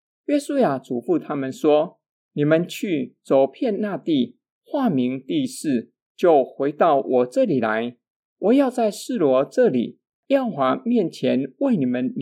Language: Chinese